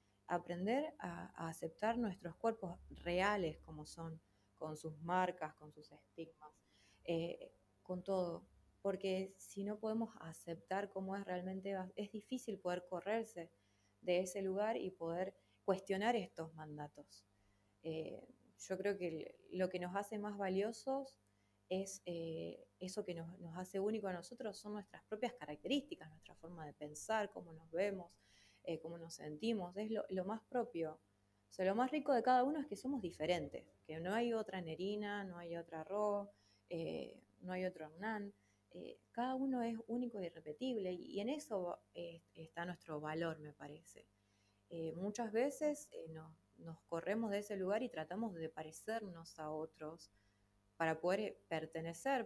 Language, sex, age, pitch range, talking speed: Spanish, female, 20-39, 160-210 Hz, 160 wpm